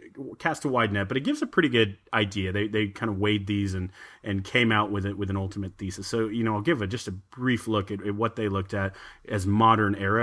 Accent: American